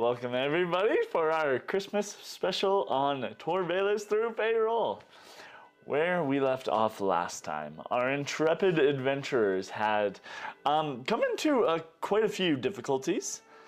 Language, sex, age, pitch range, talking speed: English, male, 30-49, 105-150 Hz, 125 wpm